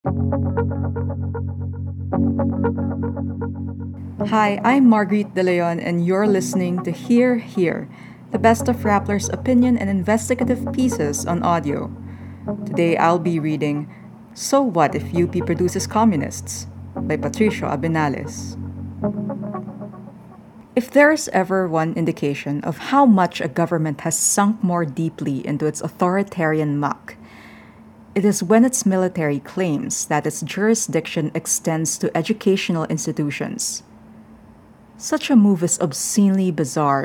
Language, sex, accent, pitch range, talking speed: English, female, Filipino, 155-210 Hz, 115 wpm